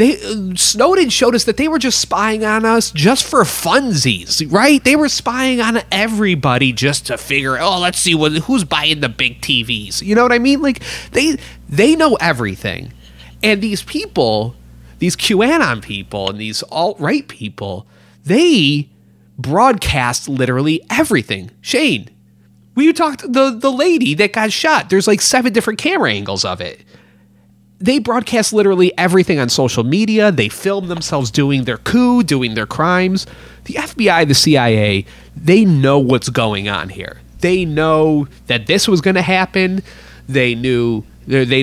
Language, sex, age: English, male, 30-49